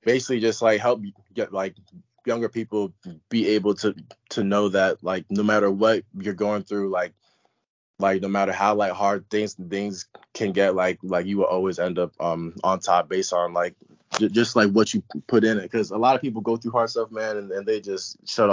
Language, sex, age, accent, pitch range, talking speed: English, male, 20-39, American, 95-105 Hz, 220 wpm